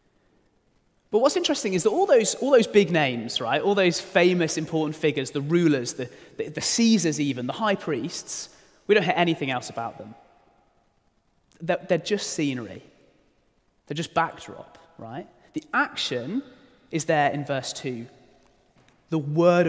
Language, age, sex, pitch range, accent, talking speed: English, 30-49, male, 130-185 Hz, British, 155 wpm